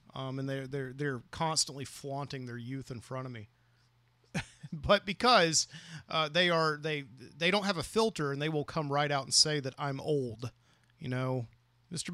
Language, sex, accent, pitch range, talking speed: English, male, American, 125-160 Hz, 190 wpm